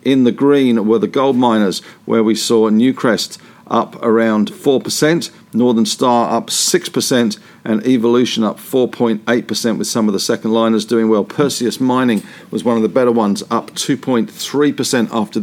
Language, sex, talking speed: English, male, 160 wpm